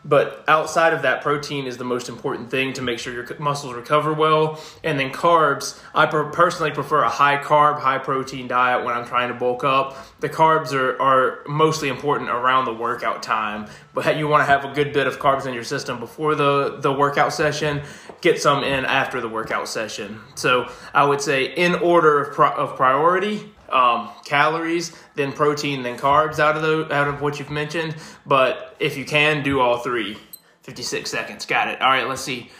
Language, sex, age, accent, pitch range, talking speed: English, male, 20-39, American, 130-155 Hz, 195 wpm